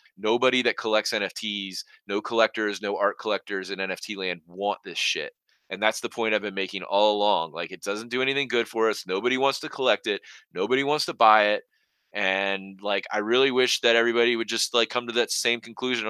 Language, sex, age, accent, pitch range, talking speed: English, male, 20-39, American, 105-130 Hz, 215 wpm